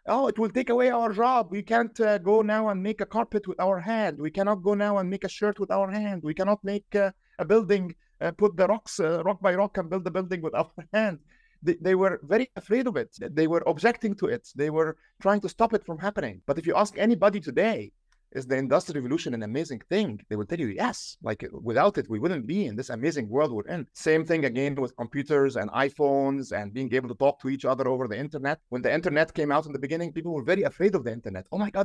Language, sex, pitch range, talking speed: English, male, 140-205 Hz, 260 wpm